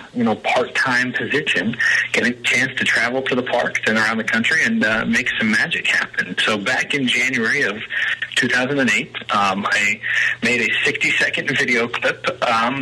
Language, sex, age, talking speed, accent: English, male, 30-49, 175 wpm, American